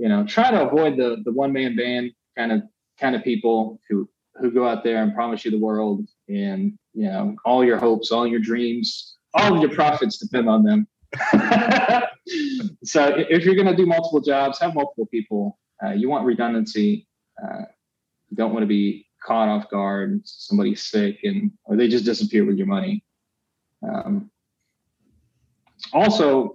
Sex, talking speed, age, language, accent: male, 175 wpm, 20-39, English, American